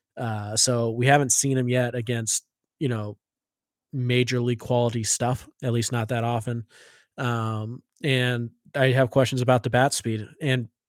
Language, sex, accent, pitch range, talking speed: English, male, American, 115-130 Hz, 160 wpm